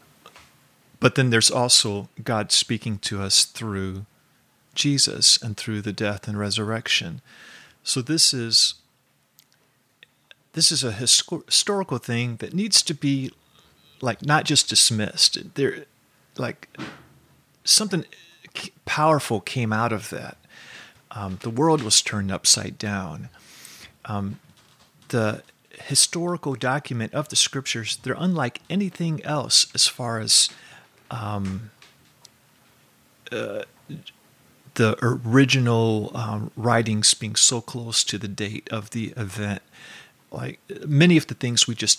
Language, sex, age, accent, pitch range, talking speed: English, male, 40-59, American, 105-135 Hz, 120 wpm